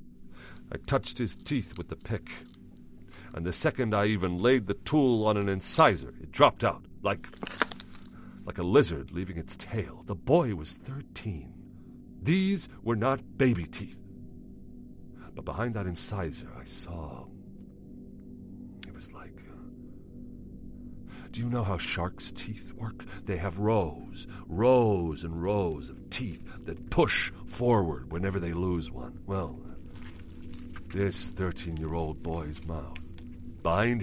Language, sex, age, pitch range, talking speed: English, male, 50-69, 80-100 Hz, 135 wpm